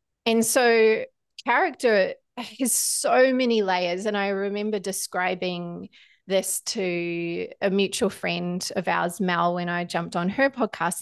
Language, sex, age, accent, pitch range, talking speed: English, female, 30-49, Australian, 190-245 Hz, 135 wpm